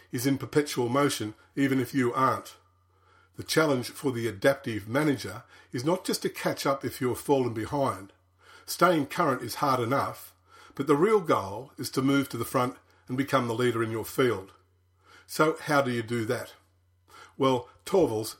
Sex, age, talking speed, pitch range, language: male, 50-69, 180 wpm, 110-140 Hz, English